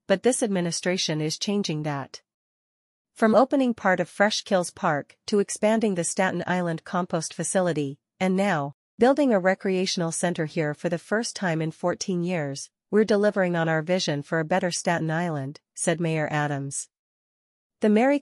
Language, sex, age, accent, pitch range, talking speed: English, female, 40-59, American, 160-200 Hz, 160 wpm